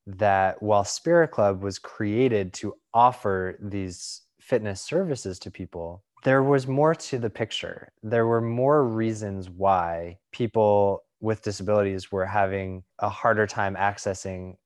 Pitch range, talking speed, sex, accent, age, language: 95-115 Hz, 135 wpm, male, American, 20-39, English